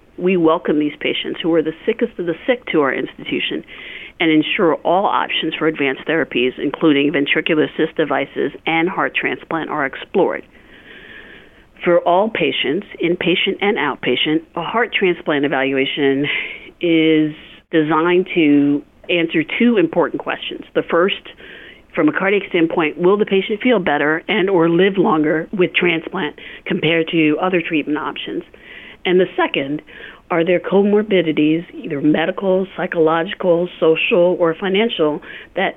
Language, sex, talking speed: English, female, 140 wpm